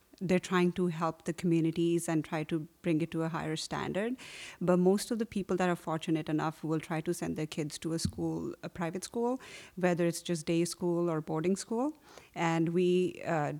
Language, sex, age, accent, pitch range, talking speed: English, female, 30-49, Indian, 165-185 Hz, 210 wpm